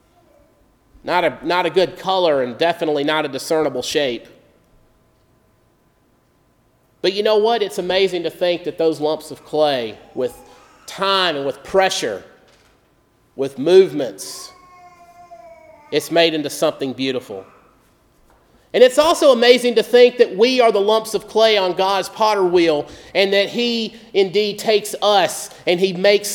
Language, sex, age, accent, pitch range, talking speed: English, male, 30-49, American, 170-225 Hz, 145 wpm